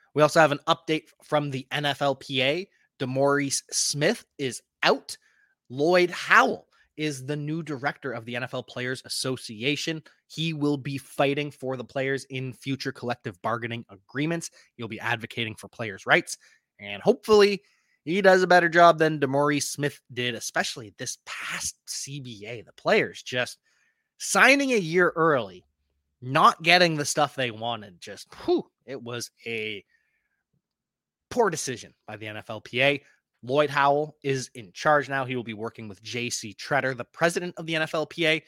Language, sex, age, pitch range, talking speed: English, male, 20-39, 130-175 Hz, 150 wpm